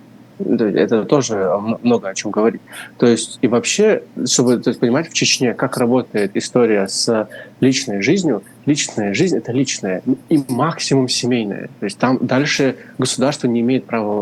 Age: 20-39